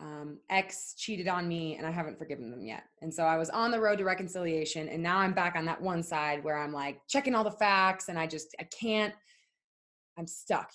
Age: 20-39